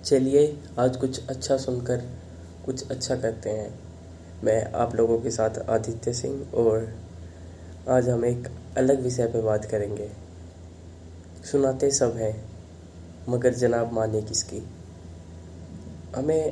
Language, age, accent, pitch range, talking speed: Hindi, 20-39, native, 90-130 Hz, 120 wpm